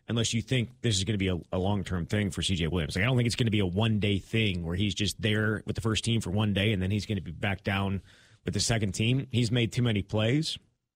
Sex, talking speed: male, 295 wpm